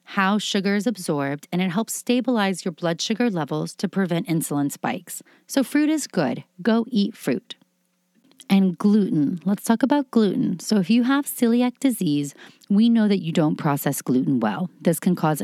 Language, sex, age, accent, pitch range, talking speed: English, female, 30-49, American, 160-220 Hz, 180 wpm